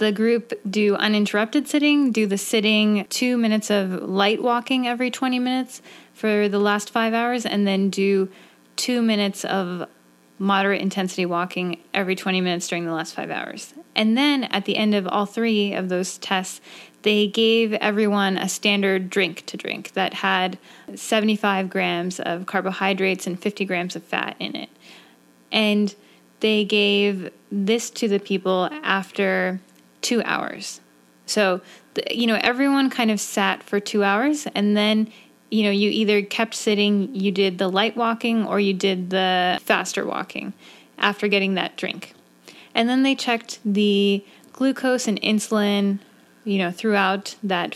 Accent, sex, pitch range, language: American, female, 190-220 Hz, English